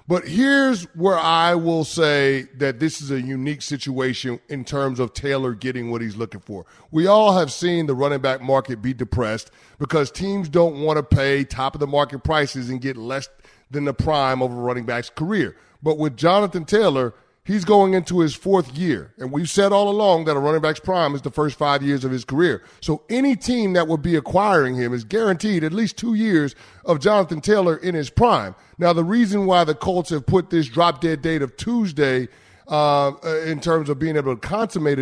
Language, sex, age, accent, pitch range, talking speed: English, male, 30-49, American, 135-165 Hz, 205 wpm